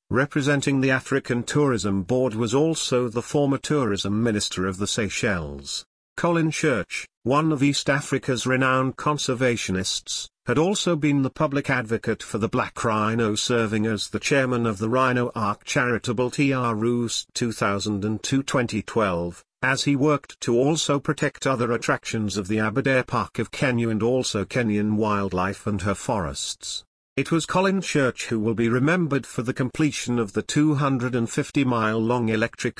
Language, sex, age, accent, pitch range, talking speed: English, male, 50-69, British, 110-135 Hz, 145 wpm